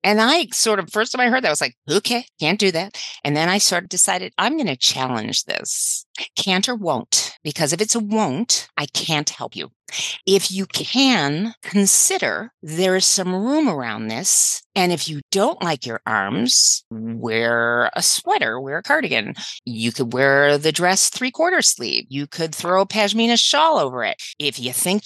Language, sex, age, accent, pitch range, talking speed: English, female, 40-59, American, 145-210 Hz, 190 wpm